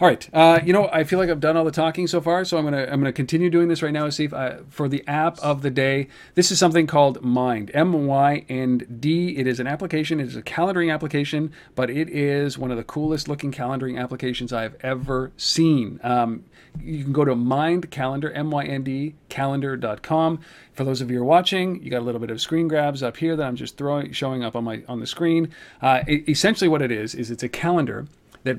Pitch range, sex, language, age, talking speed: 125-160 Hz, male, English, 40-59, 240 wpm